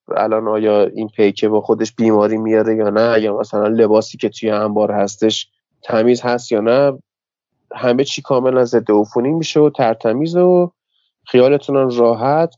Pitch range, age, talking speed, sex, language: 115-180 Hz, 30-49, 155 wpm, male, Persian